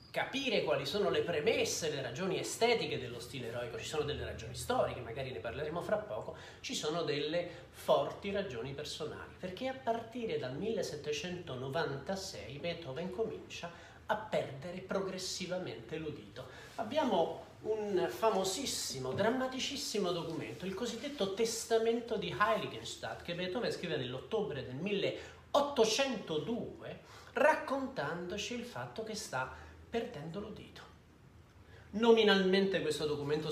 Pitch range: 155-220 Hz